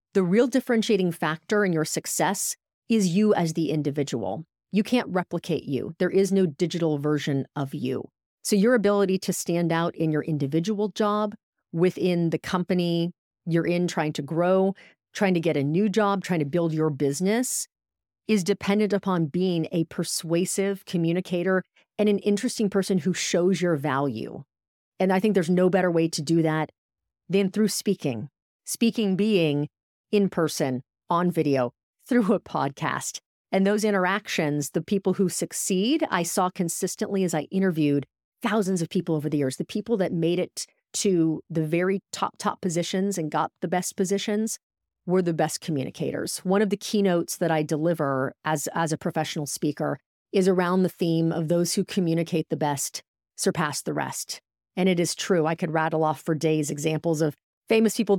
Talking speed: 170 wpm